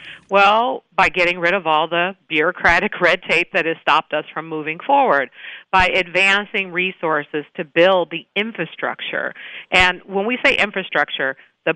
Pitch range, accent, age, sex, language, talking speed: 165-195 Hz, American, 40-59, female, English, 155 wpm